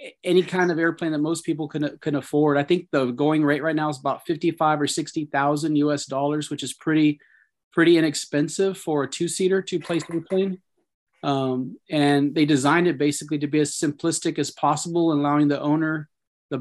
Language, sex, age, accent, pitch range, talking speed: English, male, 30-49, American, 135-150 Hz, 190 wpm